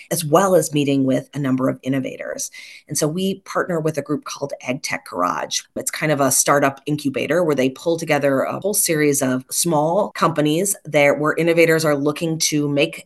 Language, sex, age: English, female, 30-49